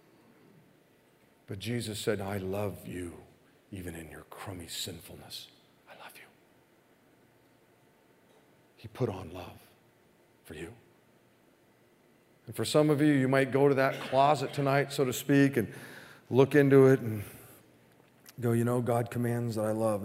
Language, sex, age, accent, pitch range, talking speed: English, male, 40-59, American, 105-130 Hz, 145 wpm